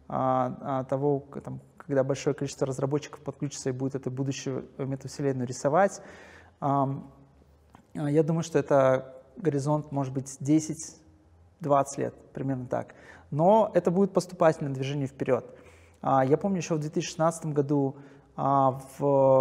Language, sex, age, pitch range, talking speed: Russian, male, 20-39, 130-155 Hz, 110 wpm